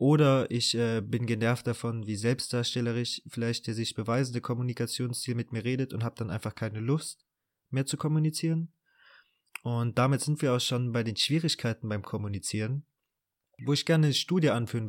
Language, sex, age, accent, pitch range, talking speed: German, male, 20-39, German, 115-140 Hz, 170 wpm